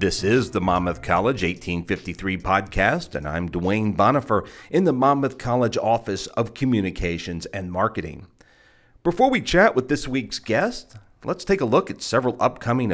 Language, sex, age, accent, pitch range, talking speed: English, male, 40-59, American, 95-130 Hz, 160 wpm